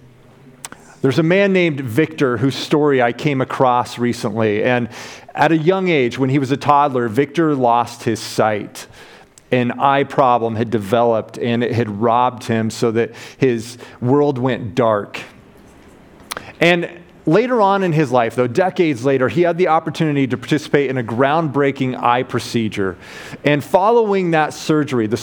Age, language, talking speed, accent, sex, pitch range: 30-49, English, 155 wpm, American, male, 125-170 Hz